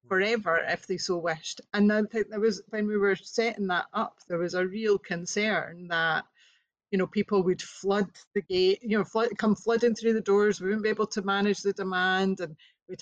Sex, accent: female, British